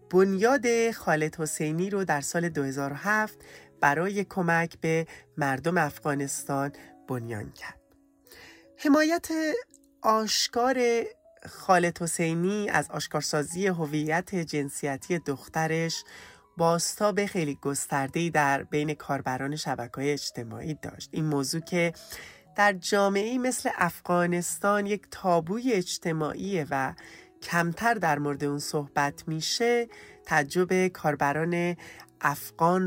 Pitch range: 145-190 Hz